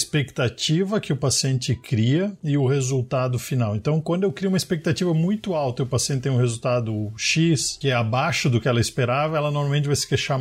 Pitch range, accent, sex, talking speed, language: 125-155 Hz, Brazilian, male, 210 wpm, Portuguese